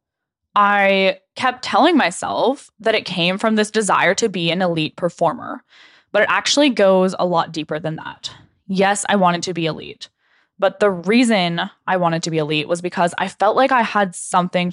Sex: female